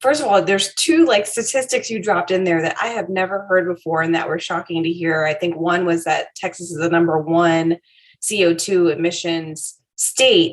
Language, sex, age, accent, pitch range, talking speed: English, female, 20-39, American, 165-185 Hz, 205 wpm